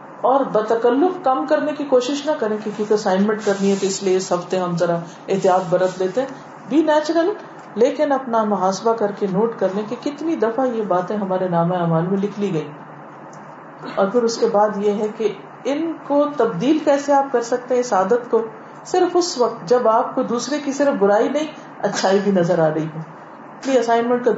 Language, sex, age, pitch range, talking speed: Urdu, female, 40-59, 205-290 Hz, 190 wpm